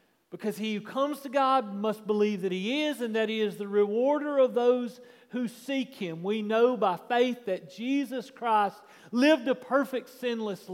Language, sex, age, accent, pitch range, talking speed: English, male, 40-59, American, 205-255 Hz, 185 wpm